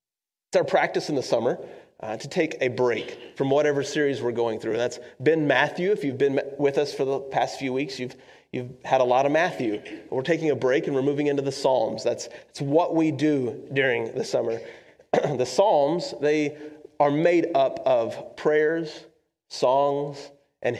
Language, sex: English, male